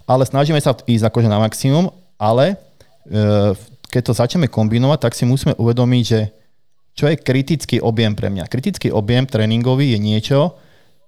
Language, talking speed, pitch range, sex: Slovak, 150 wpm, 110-130 Hz, male